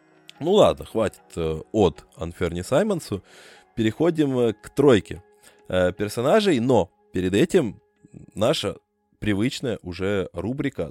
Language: Russian